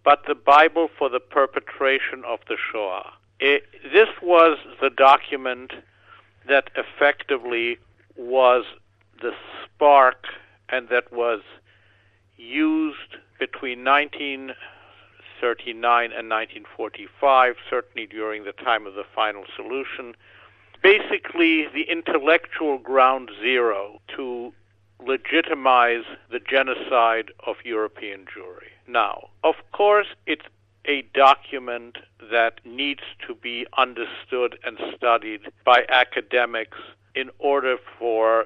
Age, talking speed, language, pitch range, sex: 60-79, 100 wpm, Italian, 120-155 Hz, male